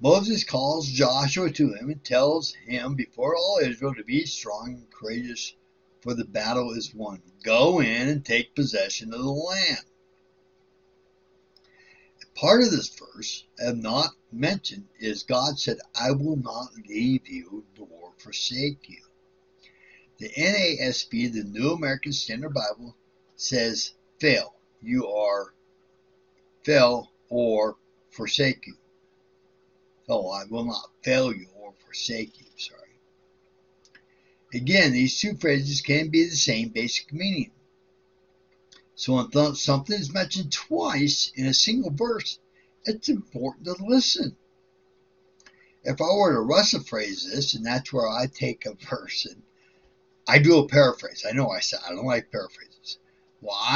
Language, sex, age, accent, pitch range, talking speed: English, male, 60-79, American, 125-190 Hz, 140 wpm